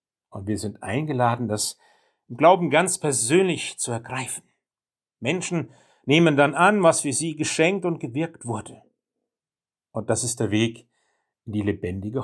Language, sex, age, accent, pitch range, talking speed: German, male, 50-69, German, 110-145 Hz, 145 wpm